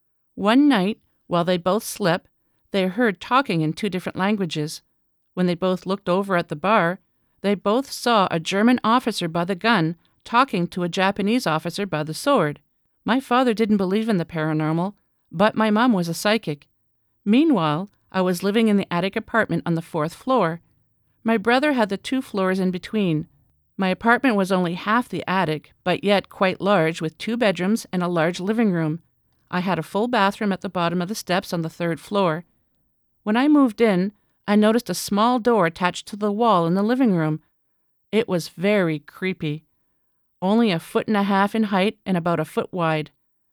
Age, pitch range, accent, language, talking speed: 50-69, 170-220 Hz, American, English, 190 wpm